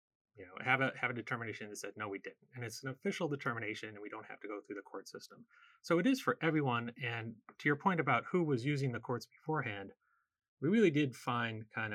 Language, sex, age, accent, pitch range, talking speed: English, male, 30-49, American, 110-145 Hz, 240 wpm